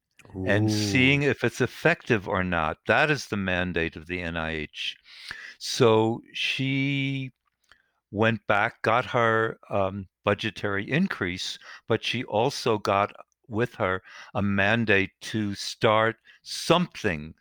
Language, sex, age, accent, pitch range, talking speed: English, male, 60-79, American, 100-125 Hz, 115 wpm